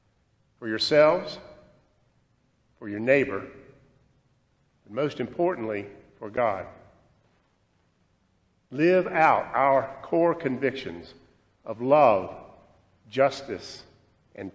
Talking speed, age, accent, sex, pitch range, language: 80 wpm, 50-69, American, male, 130-170 Hz, English